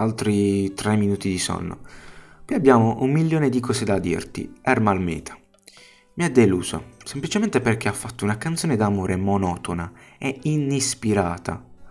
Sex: male